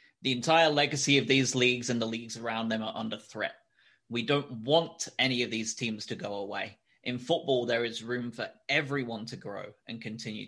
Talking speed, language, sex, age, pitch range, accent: 200 wpm, English, male, 20-39, 110-130 Hz, British